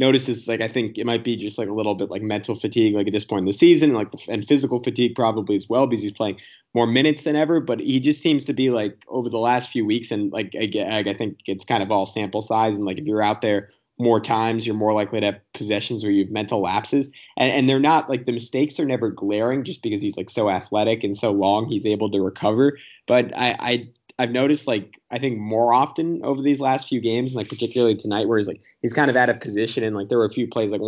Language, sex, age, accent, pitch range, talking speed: English, male, 20-39, American, 100-120 Hz, 265 wpm